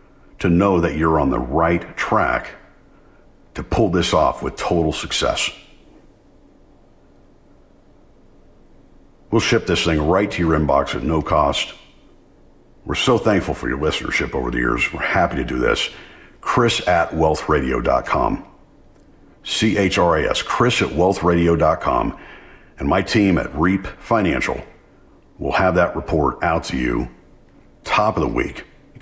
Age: 50-69